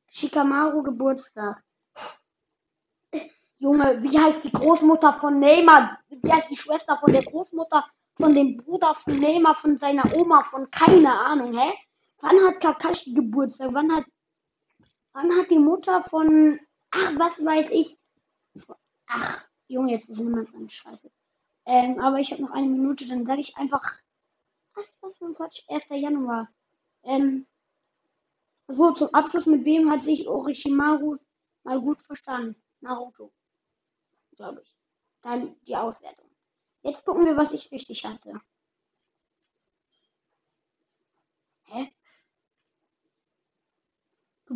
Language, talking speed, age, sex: German, 130 wpm, 20-39, female